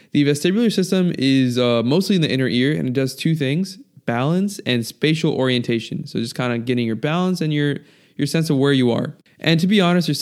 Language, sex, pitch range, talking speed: English, male, 125-155 Hz, 230 wpm